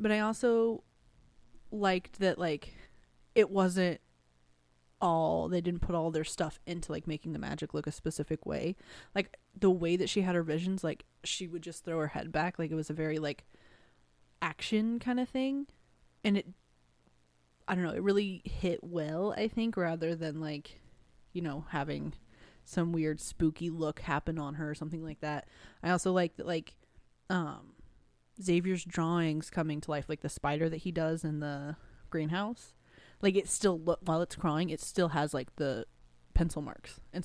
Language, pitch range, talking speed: English, 150-180 Hz, 180 wpm